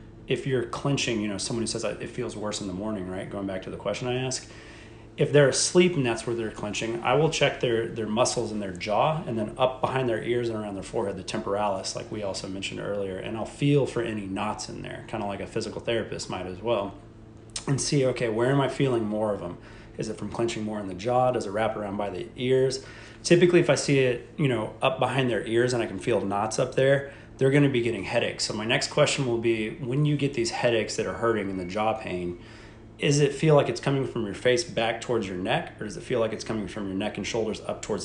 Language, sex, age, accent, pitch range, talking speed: English, male, 30-49, American, 105-130 Hz, 260 wpm